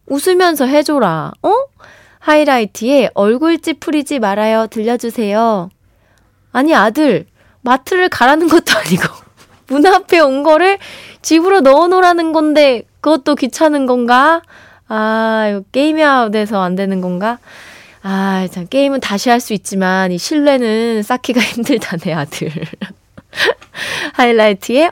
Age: 20-39